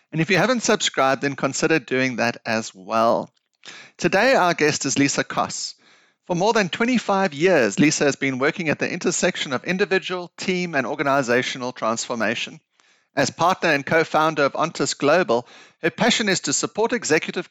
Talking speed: 165 wpm